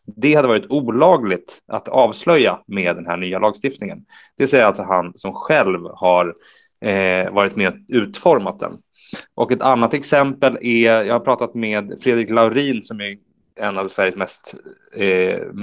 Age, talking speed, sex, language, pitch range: 20-39, 160 wpm, male, Swedish, 95-125 Hz